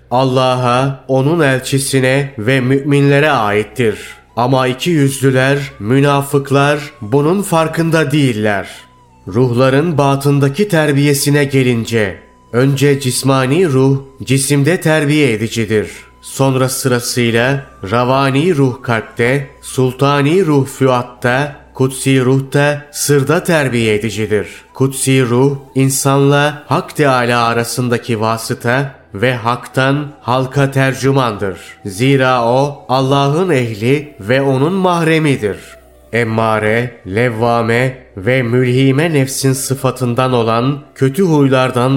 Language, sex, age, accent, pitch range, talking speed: Turkish, male, 30-49, native, 120-140 Hz, 90 wpm